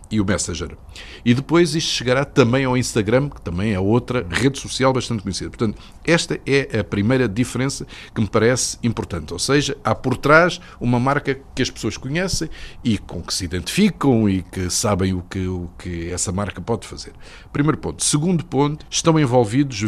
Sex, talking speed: male, 180 wpm